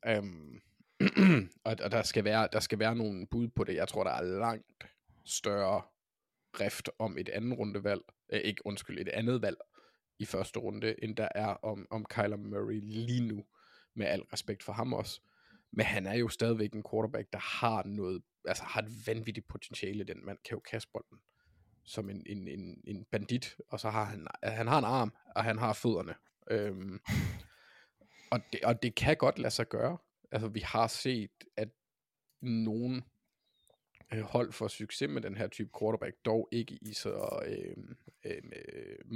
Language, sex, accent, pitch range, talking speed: Danish, male, native, 105-115 Hz, 180 wpm